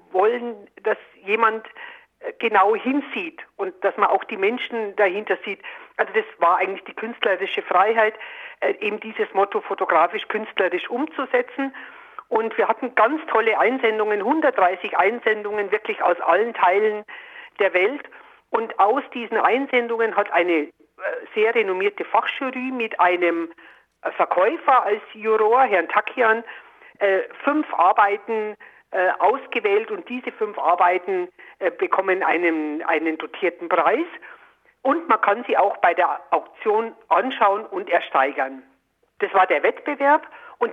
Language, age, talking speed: German, 50-69, 120 wpm